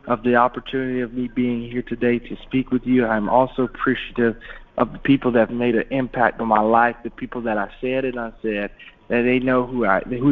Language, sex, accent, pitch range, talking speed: English, male, American, 115-145 Hz, 235 wpm